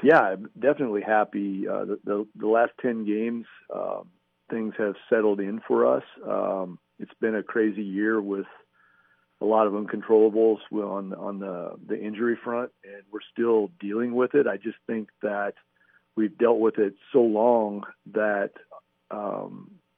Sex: male